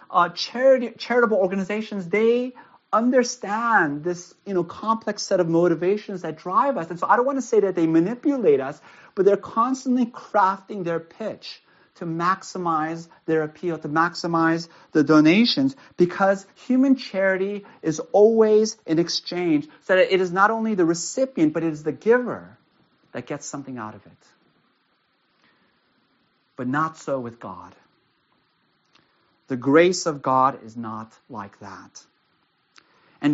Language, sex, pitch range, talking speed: English, male, 160-215 Hz, 145 wpm